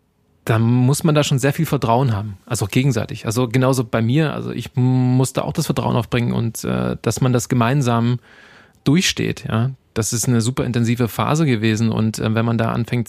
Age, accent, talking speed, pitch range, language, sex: 20-39, German, 205 wpm, 110-130 Hz, German, male